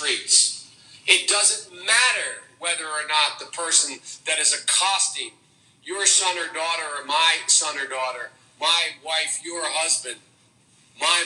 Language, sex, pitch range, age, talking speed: English, male, 155-220 Hz, 50-69, 135 wpm